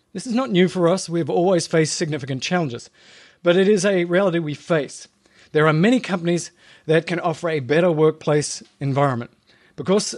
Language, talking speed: English, 185 wpm